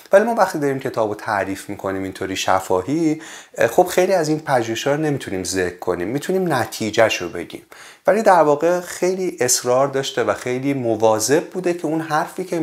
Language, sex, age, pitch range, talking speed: Persian, male, 30-49, 105-160 Hz, 160 wpm